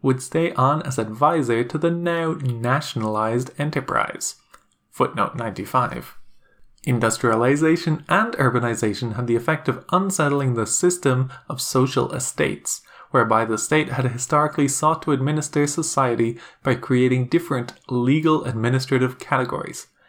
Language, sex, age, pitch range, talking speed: English, male, 20-39, 120-155 Hz, 120 wpm